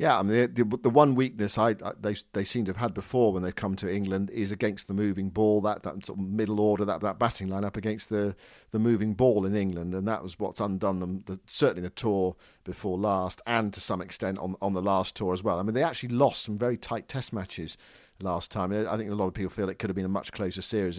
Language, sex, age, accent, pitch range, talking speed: English, male, 50-69, British, 95-115 Hz, 265 wpm